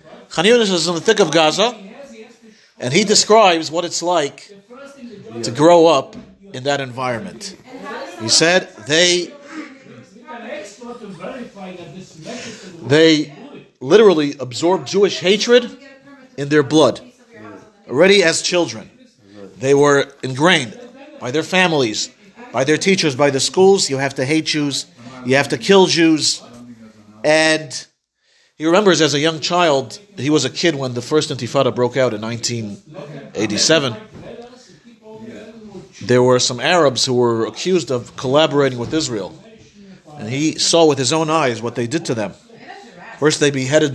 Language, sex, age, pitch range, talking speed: English, male, 40-59, 135-195 Hz, 135 wpm